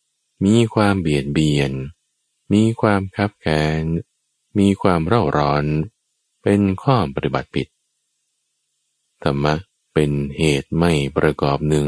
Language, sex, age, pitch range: Thai, male, 20-39, 75-100 Hz